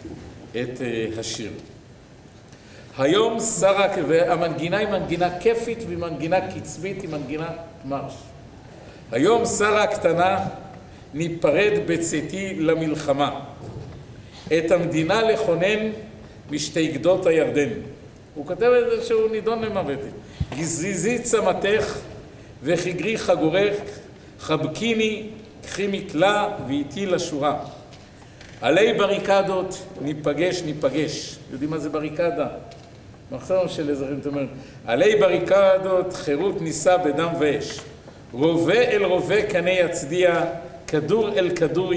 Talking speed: 95 wpm